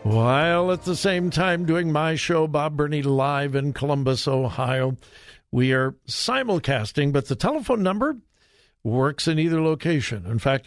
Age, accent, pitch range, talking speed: 60-79, American, 140-215 Hz, 150 wpm